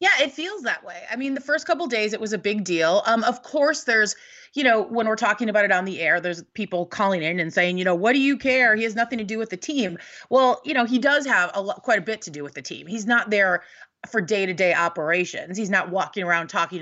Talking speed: 275 wpm